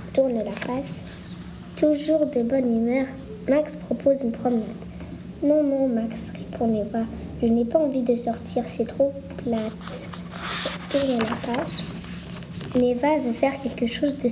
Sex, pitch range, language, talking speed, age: female, 225-265 Hz, French, 145 wpm, 10-29